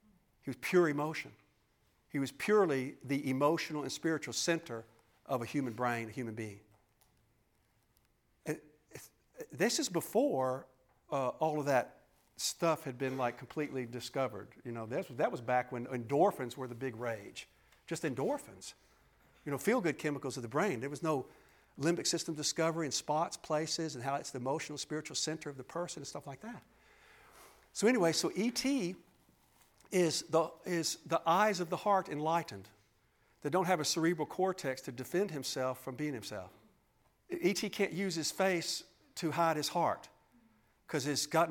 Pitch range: 125-165 Hz